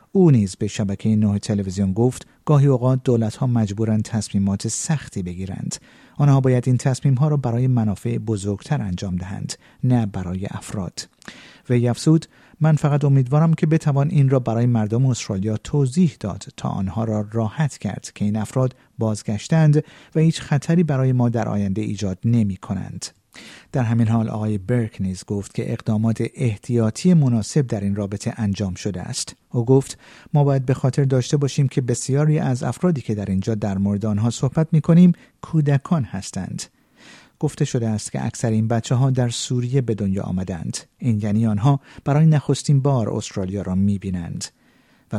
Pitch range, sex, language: 105-140 Hz, male, Persian